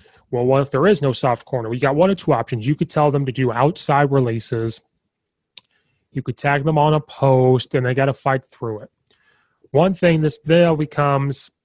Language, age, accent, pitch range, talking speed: English, 30-49, American, 125-155 Hz, 210 wpm